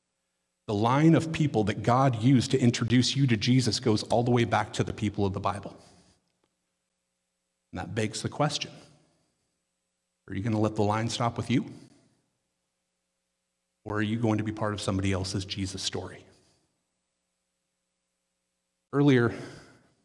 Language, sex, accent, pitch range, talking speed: English, male, American, 95-125 Hz, 155 wpm